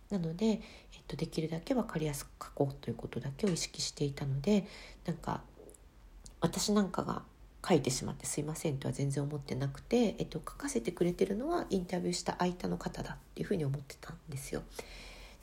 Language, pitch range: Japanese, 145-195 Hz